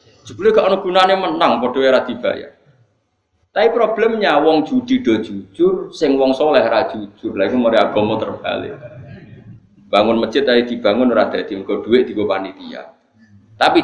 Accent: native